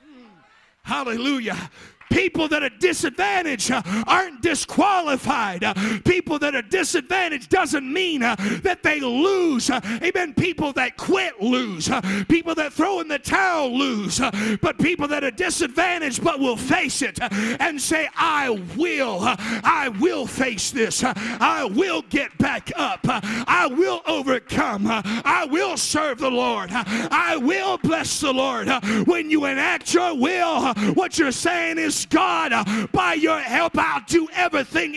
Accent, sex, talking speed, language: American, male, 135 wpm, English